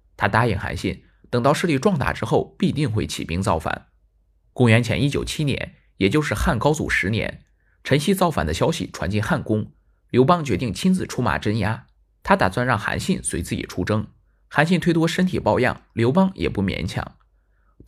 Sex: male